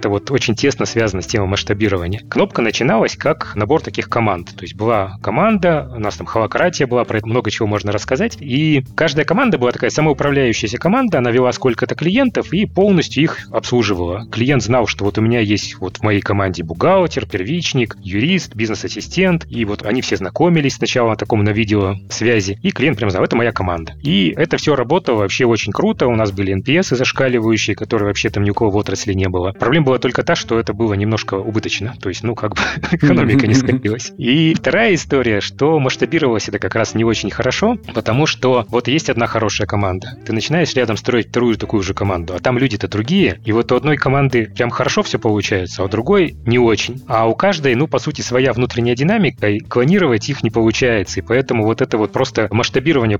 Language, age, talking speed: Russian, 30-49, 205 wpm